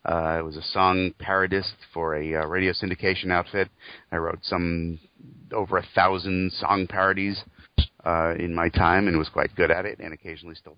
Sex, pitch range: male, 85-105 Hz